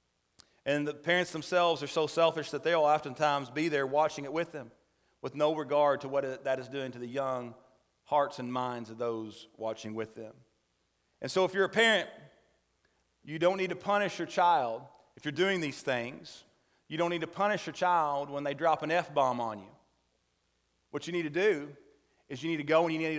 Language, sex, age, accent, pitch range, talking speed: English, male, 40-59, American, 125-170 Hz, 205 wpm